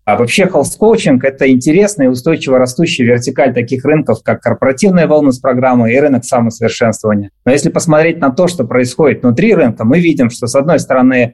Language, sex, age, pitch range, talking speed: Russian, male, 20-39, 120-155 Hz, 180 wpm